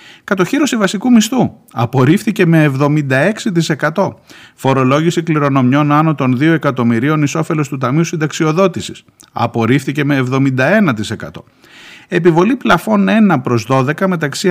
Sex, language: male, Greek